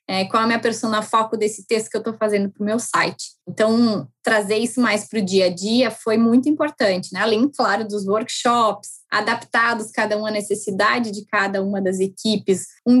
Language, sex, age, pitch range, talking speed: Portuguese, female, 10-29, 200-235 Hz, 205 wpm